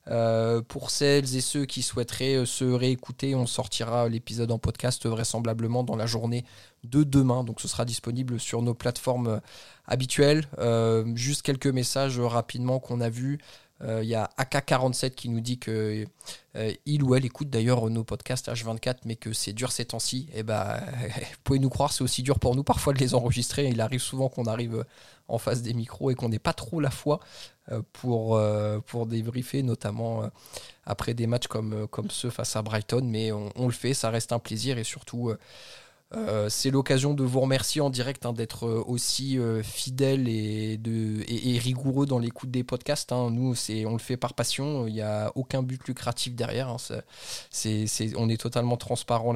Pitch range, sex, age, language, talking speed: 115-130 Hz, male, 20-39, French, 190 wpm